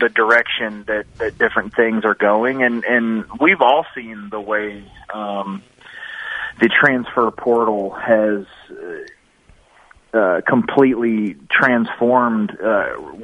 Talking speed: 110 wpm